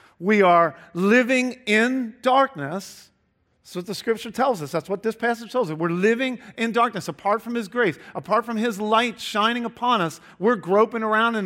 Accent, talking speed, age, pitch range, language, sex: American, 190 wpm, 50-69, 155-225 Hz, English, male